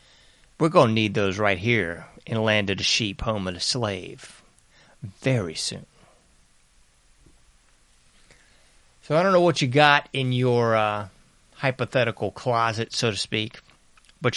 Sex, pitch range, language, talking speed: male, 105-130 Hz, English, 140 wpm